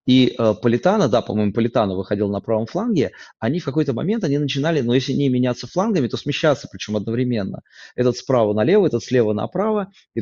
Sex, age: male, 30-49